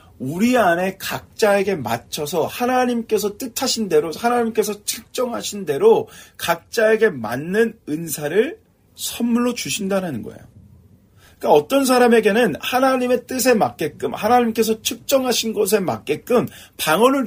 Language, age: Korean, 40-59